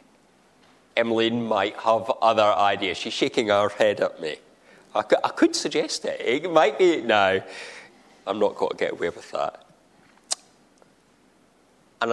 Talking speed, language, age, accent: 145 wpm, English, 40-59, British